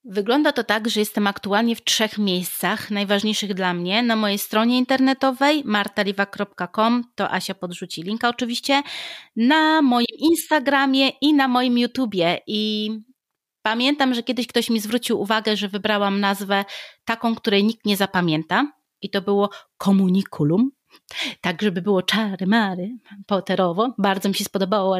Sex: female